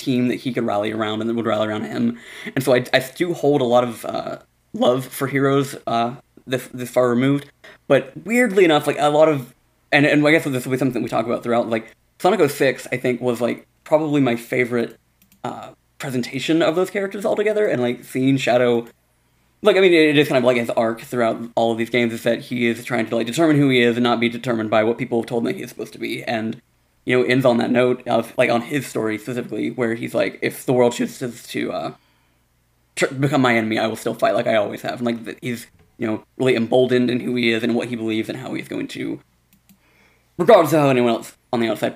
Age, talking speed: 20-39, 250 wpm